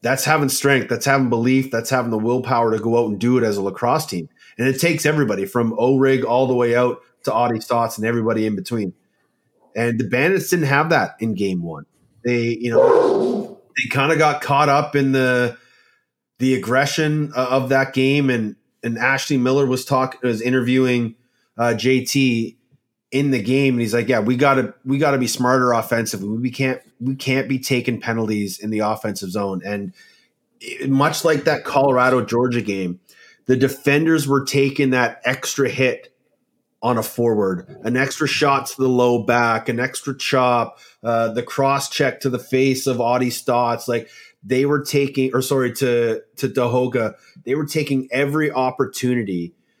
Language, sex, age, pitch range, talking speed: English, male, 30-49, 120-135 Hz, 180 wpm